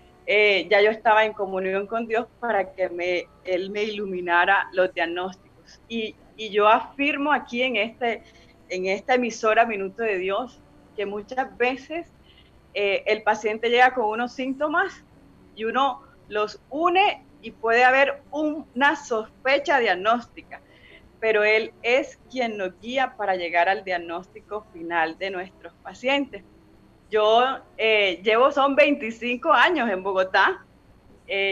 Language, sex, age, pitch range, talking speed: Spanish, female, 30-49, 195-240 Hz, 140 wpm